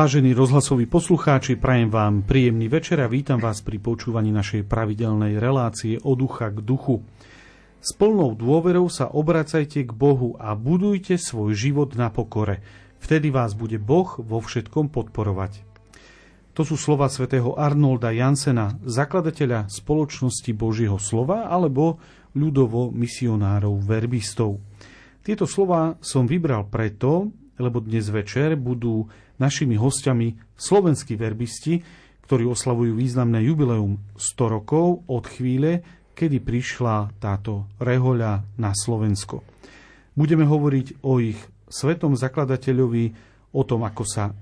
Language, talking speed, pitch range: Slovak, 120 wpm, 110-145 Hz